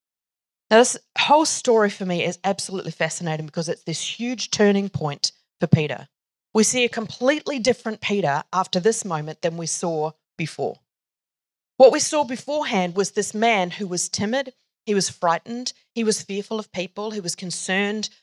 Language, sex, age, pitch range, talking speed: English, female, 30-49, 185-235 Hz, 170 wpm